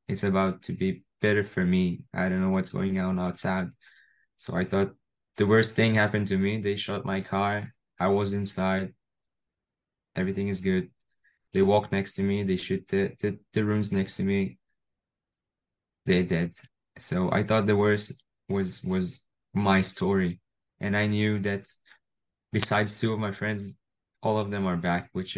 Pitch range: 95-105 Hz